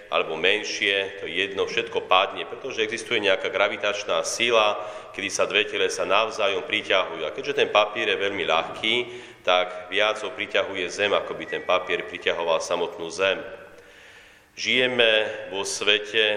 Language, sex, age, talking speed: Slovak, male, 40-59, 145 wpm